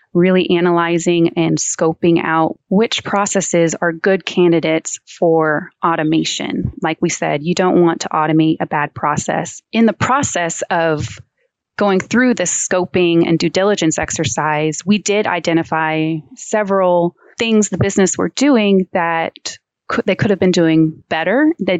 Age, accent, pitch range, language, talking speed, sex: 20-39, American, 165-195 Hz, English, 145 wpm, female